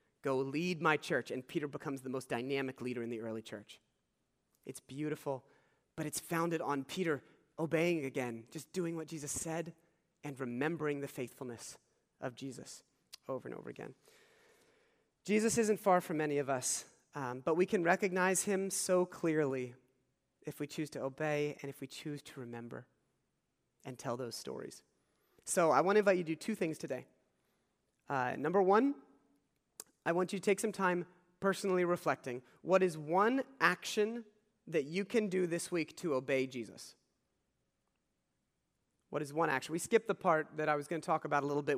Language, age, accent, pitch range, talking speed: English, 30-49, American, 135-180 Hz, 175 wpm